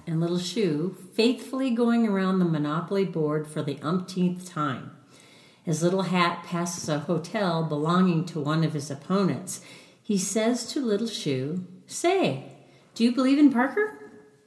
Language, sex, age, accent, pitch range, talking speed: English, female, 50-69, American, 155-235 Hz, 150 wpm